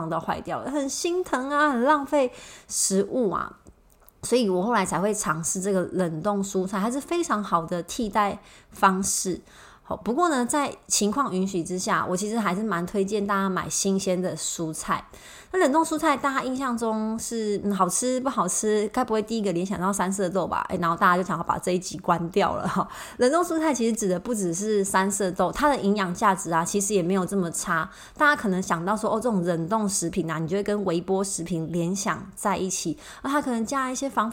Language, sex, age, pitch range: Chinese, female, 20-39, 180-225 Hz